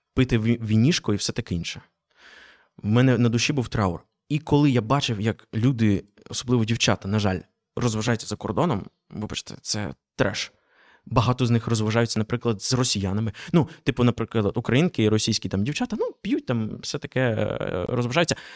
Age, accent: 20-39, native